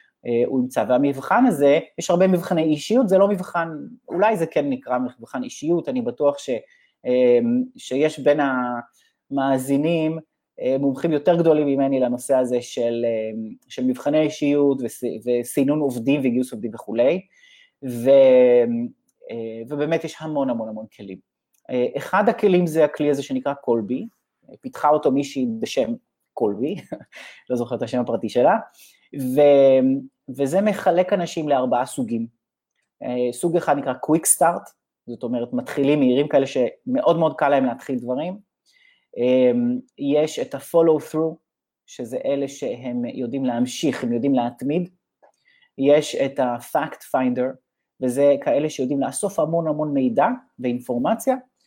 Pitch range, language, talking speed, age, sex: 125-180 Hz, English, 120 wpm, 30-49, male